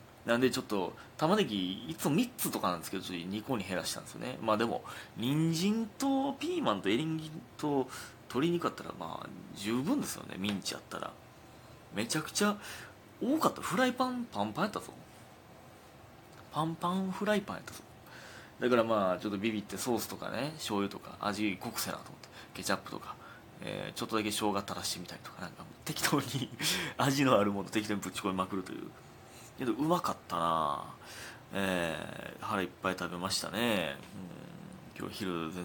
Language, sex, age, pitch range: Japanese, male, 30-49, 95-160 Hz